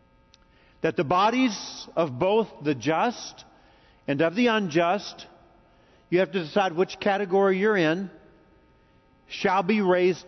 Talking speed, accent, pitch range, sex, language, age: 130 wpm, American, 180-220 Hz, male, English, 50-69